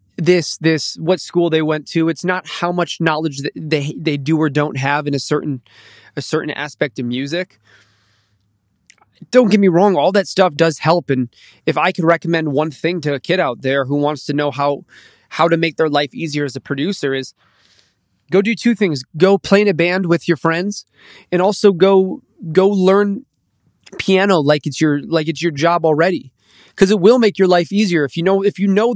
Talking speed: 210 wpm